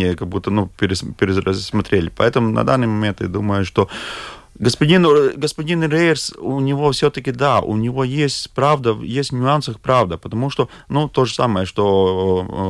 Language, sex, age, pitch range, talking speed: Russian, male, 30-49, 105-125 Hz, 155 wpm